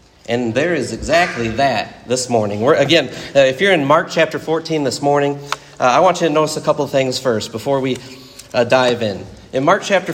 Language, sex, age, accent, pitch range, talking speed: English, male, 40-59, American, 125-170 Hz, 220 wpm